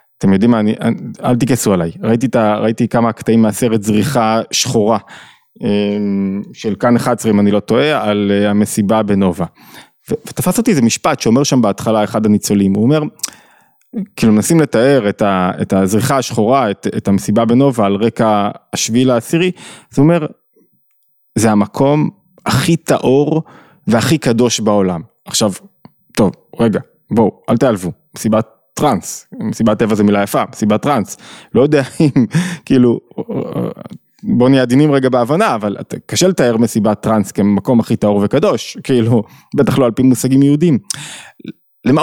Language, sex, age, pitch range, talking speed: Hebrew, male, 20-39, 105-140 Hz, 145 wpm